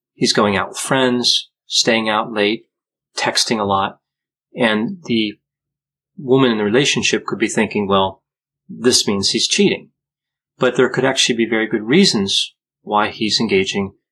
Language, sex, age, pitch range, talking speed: English, male, 30-49, 105-130 Hz, 155 wpm